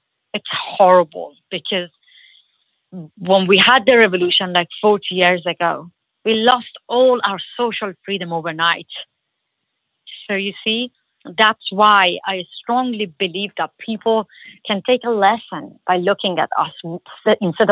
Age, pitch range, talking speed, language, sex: 30-49, 175-225 Hz, 130 wpm, English, female